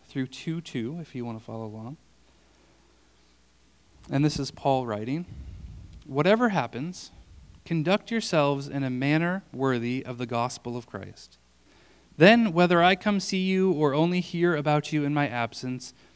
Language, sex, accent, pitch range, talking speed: English, male, American, 115-170 Hz, 150 wpm